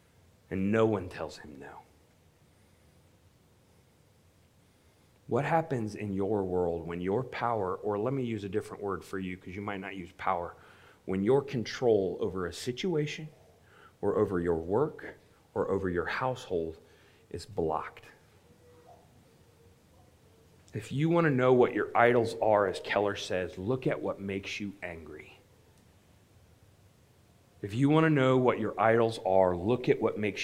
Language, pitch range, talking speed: English, 95-125 Hz, 150 wpm